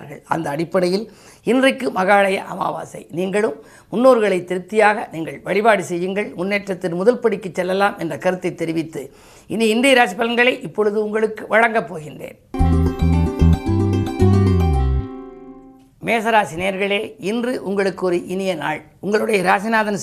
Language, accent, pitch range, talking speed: Tamil, native, 175-220 Hz, 70 wpm